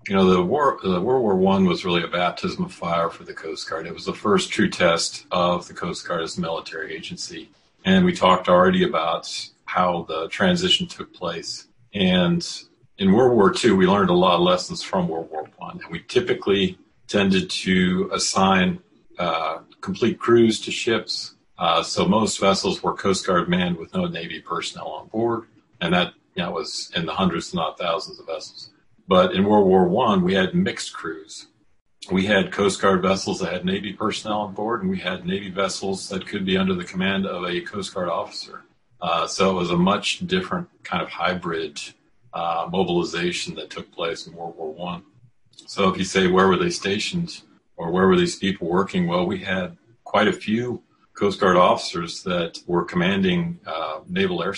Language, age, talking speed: English, 40-59, 195 wpm